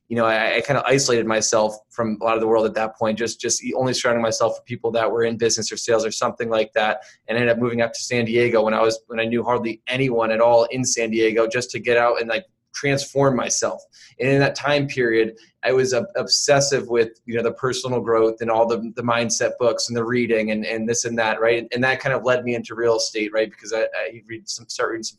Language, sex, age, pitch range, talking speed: English, male, 20-39, 115-130 Hz, 265 wpm